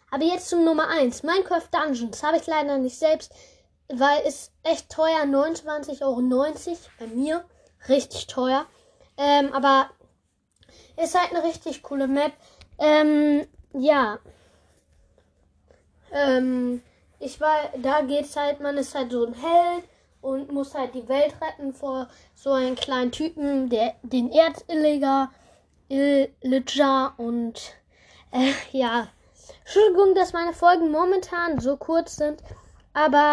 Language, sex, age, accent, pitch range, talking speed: German, female, 10-29, German, 265-315 Hz, 130 wpm